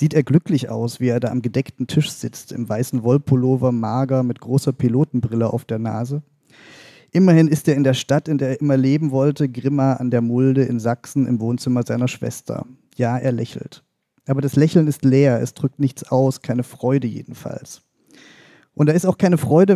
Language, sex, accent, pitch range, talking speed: German, male, German, 125-150 Hz, 195 wpm